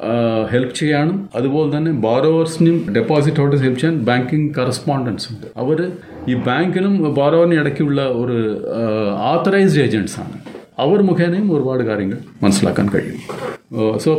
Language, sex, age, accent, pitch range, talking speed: Malayalam, male, 40-59, native, 125-165 Hz, 115 wpm